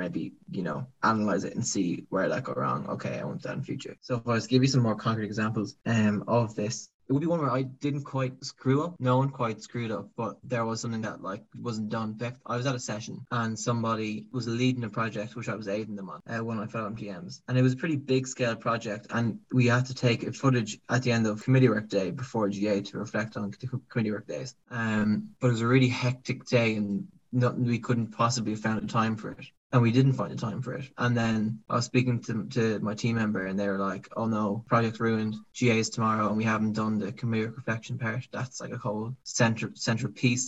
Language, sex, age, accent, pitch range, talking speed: English, male, 20-39, Irish, 110-125 Hz, 250 wpm